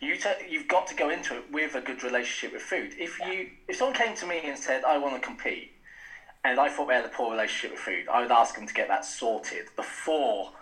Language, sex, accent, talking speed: English, male, British, 260 wpm